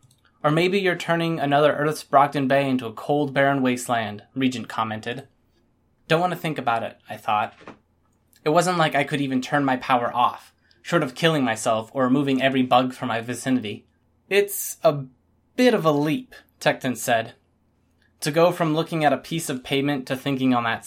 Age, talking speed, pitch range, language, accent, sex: 20-39, 185 wpm, 125-165 Hz, English, American, male